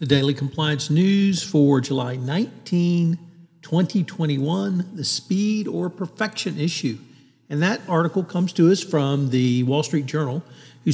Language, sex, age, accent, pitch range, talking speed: English, male, 50-69, American, 135-165 Hz, 135 wpm